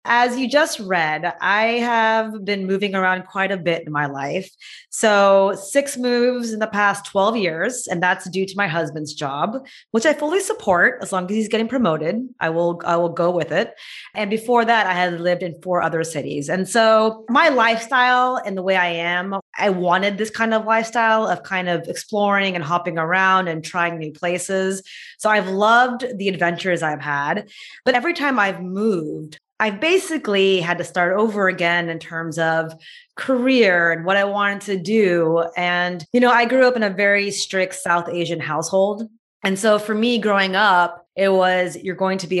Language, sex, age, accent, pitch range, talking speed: English, female, 20-39, American, 175-220 Hz, 195 wpm